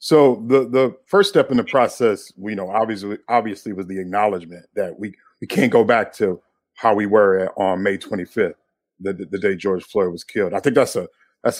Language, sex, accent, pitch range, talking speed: English, male, American, 95-120 Hz, 220 wpm